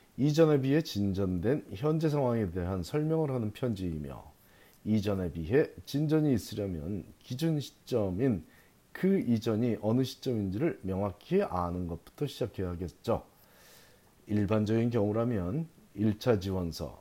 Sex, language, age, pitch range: male, Korean, 40-59, 95-130 Hz